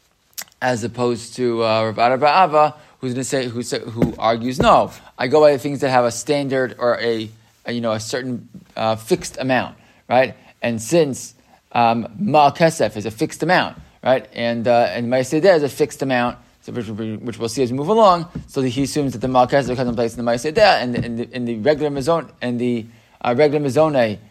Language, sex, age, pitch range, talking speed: English, male, 20-39, 115-140 Hz, 220 wpm